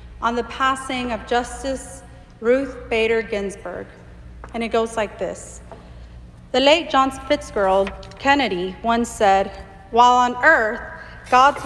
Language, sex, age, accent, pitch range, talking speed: English, female, 40-59, American, 200-255 Hz, 125 wpm